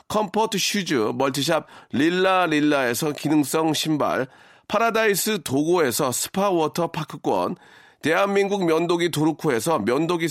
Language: Korean